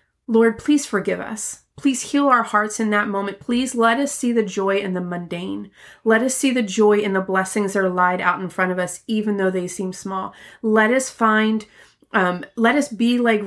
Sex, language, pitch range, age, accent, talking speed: female, English, 200-230 Hz, 30-49, American, 220 wpm